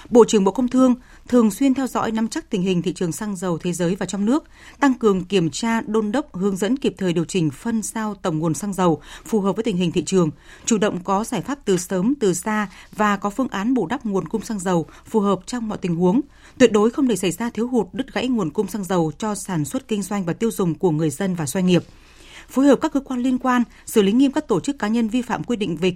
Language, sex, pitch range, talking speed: Vietnamese, female, 185-235 Hz, 275 wpm